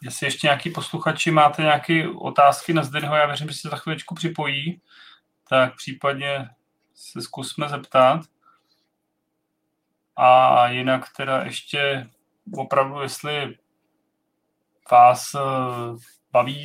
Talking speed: 105 wpm